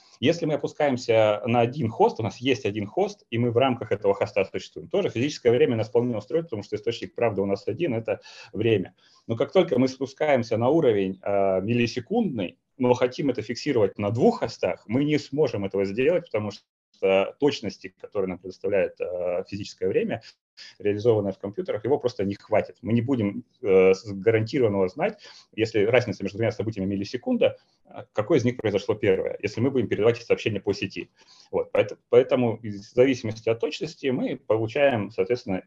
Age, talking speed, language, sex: 30-49, 170 wpm, Russian, male